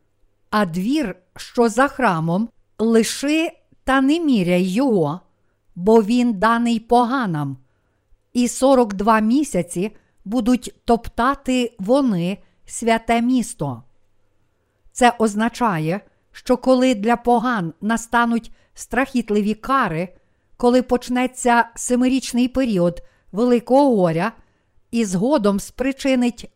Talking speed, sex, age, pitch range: 90 wpm, female, 50-69, 190-255 Hz